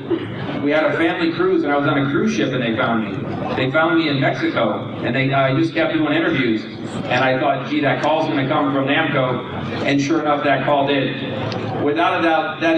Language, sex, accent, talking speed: English, male, American, 230 wpm